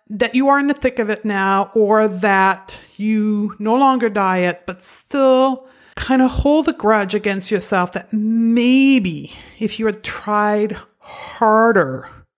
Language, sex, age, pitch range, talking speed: English, female, 50-69, 185-225 Hz, 150 wpm